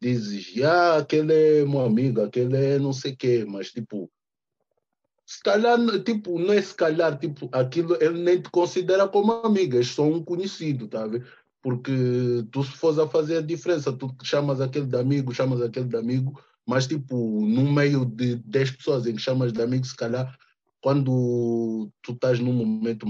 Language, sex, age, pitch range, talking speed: Portuguese, male, 20-39, 120-165 Hz, 185 wpm